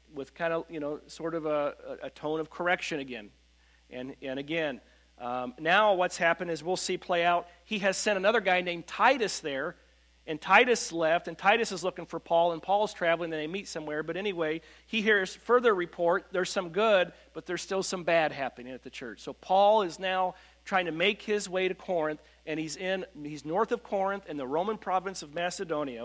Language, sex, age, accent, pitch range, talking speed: English, male, 40-59, American, 160-235 Hz, 210 wpm